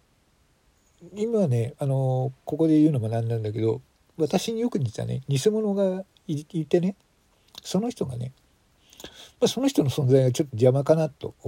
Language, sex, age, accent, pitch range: Japanese, male, 50-69, native, 110-145 Hz